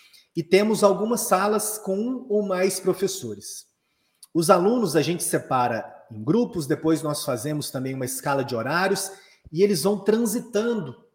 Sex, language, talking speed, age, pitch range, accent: male, Portuguese, 150 wpm, 30-49, 140-195 Hz, Brazilian